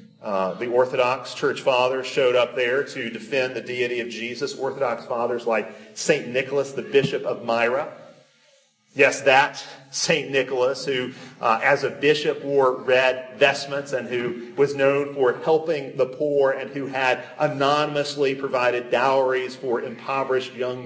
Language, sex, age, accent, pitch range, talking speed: English, male, 40-59, American, 125-155 Hz, 150 wpm